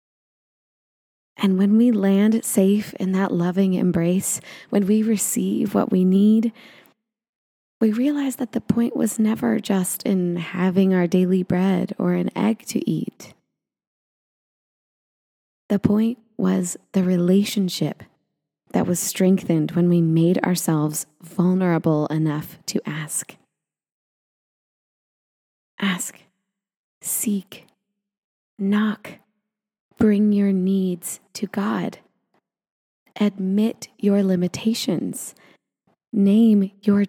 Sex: female